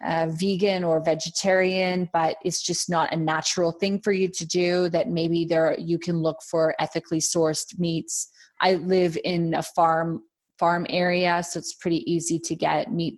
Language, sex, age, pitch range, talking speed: English, female, 20-39, 160-190 Hz, 180 wpm